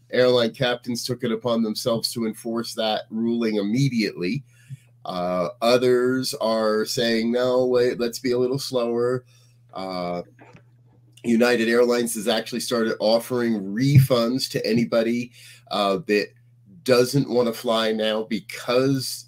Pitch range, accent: 105-125 Hz, American